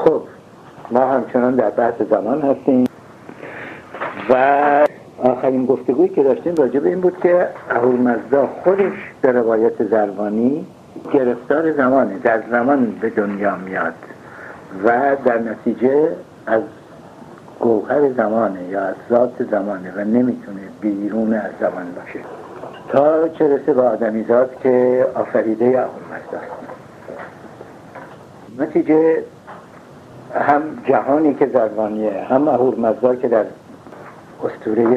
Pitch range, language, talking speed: 110-140 Hz, Persian, 110 wpm